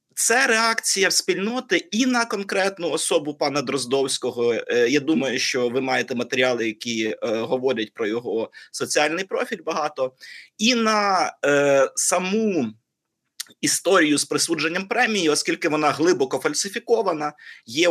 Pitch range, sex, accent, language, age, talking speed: 130-200 Hz, male, native, Ukrainian, 30-49, 115 wpm